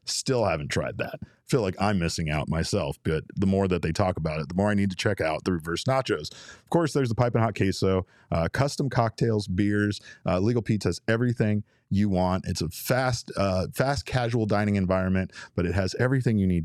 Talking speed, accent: 215 wpm, American